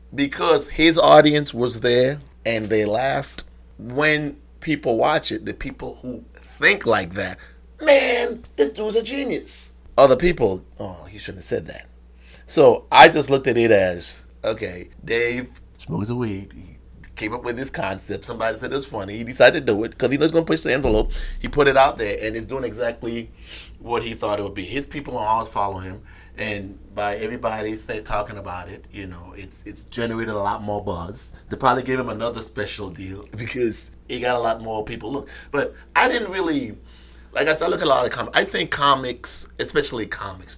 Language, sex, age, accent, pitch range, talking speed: English, male, 30-49, American, 95-135 Hz, 200 wpm